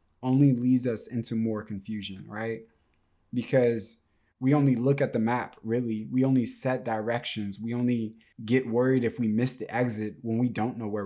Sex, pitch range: male, 100-120 Hz